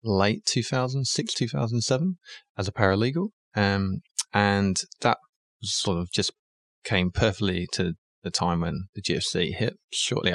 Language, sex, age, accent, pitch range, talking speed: English, male, 20-39, British, 90-120 Hz, 130 wpm